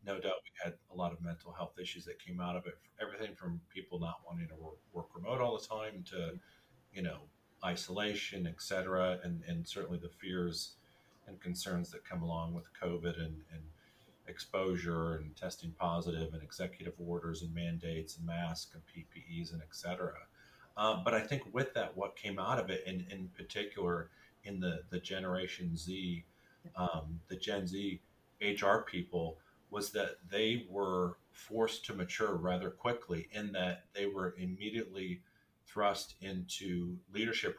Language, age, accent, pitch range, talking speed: English, 40-59, American, 85-100 Hz, 170 wpm